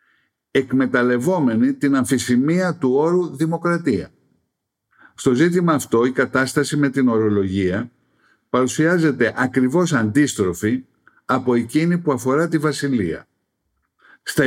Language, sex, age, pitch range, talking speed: Greek, male, 60-79, 120-165 Hz, 100 wpm